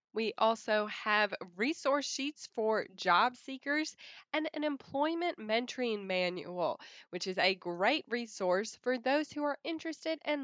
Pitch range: 190-260 Hz